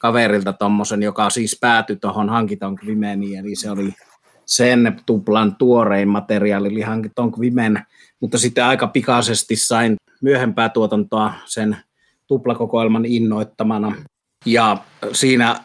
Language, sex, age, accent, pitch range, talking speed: Finnish, male, 30-49, native, 105-115 Hz, 115 wpm